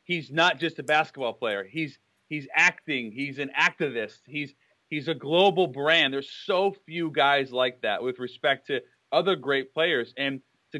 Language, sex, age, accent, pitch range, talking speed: English, male, 30-49, American, 135-170 Hz, 170 wpm